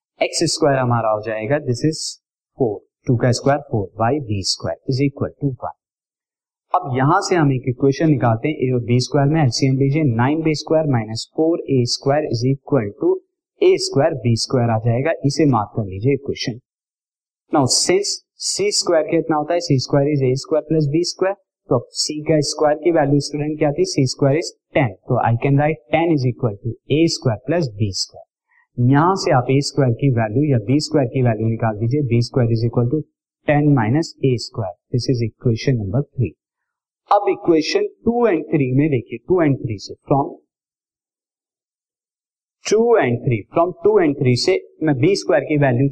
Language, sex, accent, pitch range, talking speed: Hindi, male, native, 125-165 Hz, 155 wpm